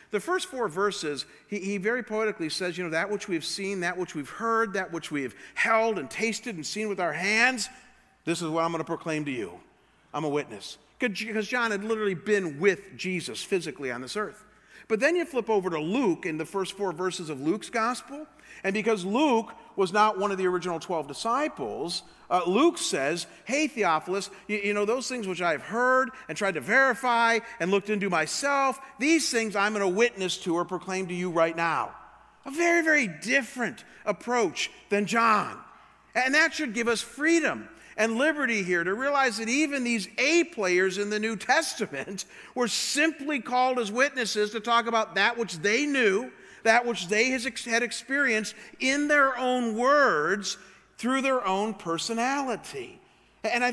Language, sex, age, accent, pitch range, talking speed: English, male, 50-69, American, 190-255 Hz, 190 wpm